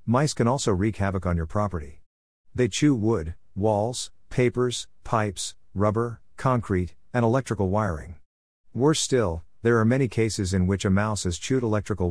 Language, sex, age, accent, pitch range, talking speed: English, male, 50-69, American, 90-115 Hz, 160 wpm